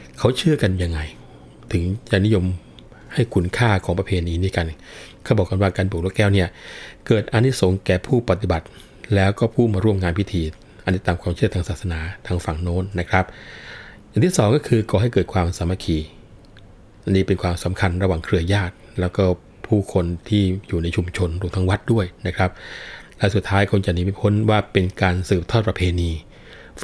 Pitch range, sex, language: 90-105 Hz, male, Thai